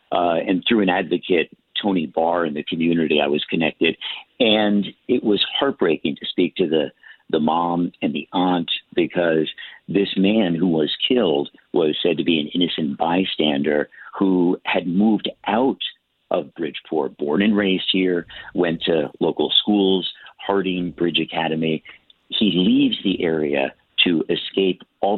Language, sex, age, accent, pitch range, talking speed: English, male, 50-69, American, 80-100 Hz, 150 wpm